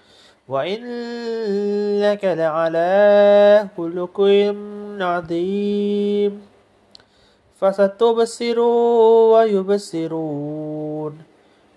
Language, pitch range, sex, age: Indonesian, 155-205 Hz, male, 30-49